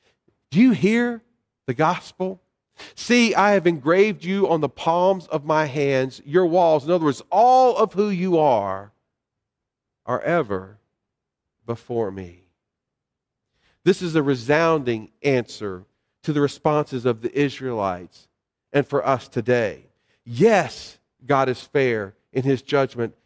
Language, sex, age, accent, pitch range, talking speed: English, male, 40-59, American, 120-165 Hz, 135 wpm